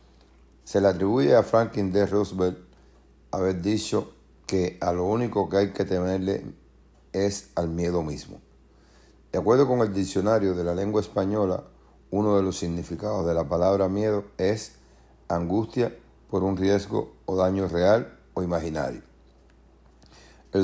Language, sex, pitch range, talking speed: Spanish, male, 75-100 Hz, 140 wpm